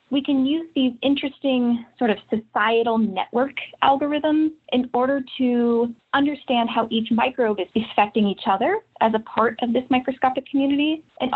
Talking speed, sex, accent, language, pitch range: 155 wpm, female, American, English, 200-255 Hz